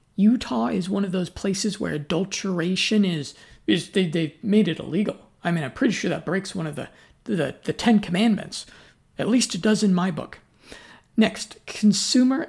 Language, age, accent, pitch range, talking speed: English, 50-69, American, 180-215 Hz, 185 wpm